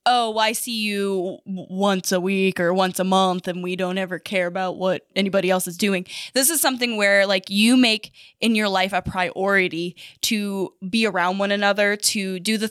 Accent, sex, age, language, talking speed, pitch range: American, female, 10-29, English, 200 wpm, 190-250 Hz